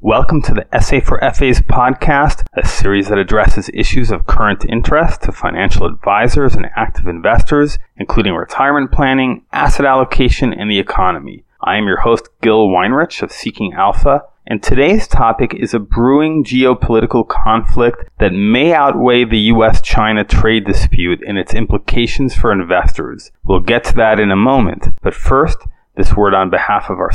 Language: English